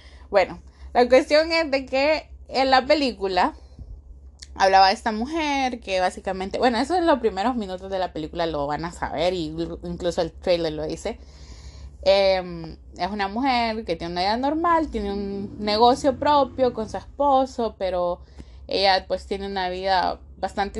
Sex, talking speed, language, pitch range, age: female, 165 wpm, Spanish, 170-245 Hz, 20-39